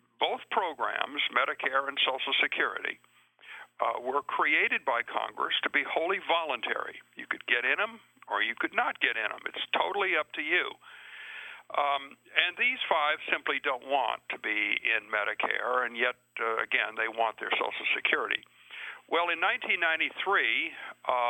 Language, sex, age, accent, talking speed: English, male, 60-79, American, 155 wpm